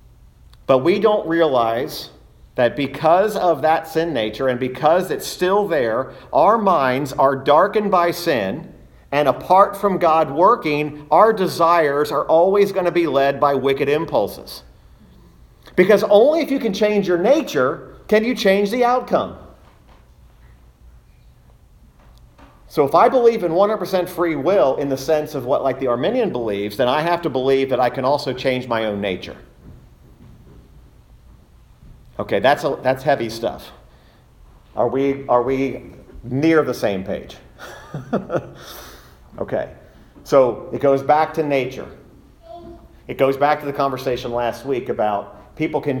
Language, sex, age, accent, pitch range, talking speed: English, male, 40-59, American, 120-175 Hz, 145 wpm